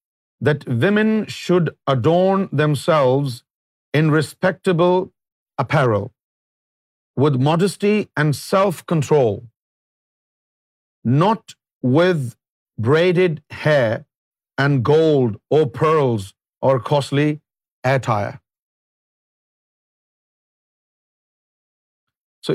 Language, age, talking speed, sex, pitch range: Urdu, 50-69, 65 wpm, male, 120-170 Hz